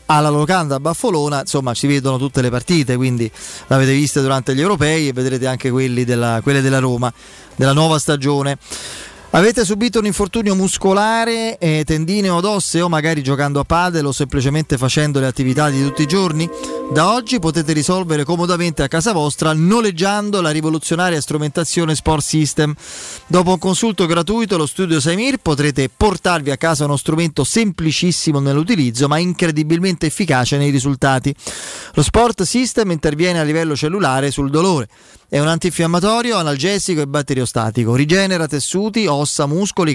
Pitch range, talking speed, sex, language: 145-190 Hz, 155 wpm, male, Italian